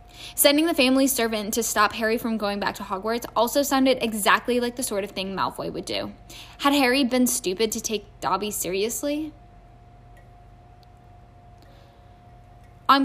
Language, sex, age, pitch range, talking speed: English, female, 10-29, 195-255 Hz, 145 wpm